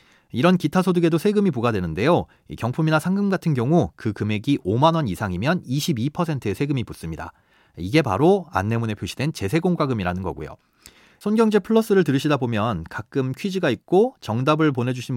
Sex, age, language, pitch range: male, 30-49, Korean, 110-170 Hz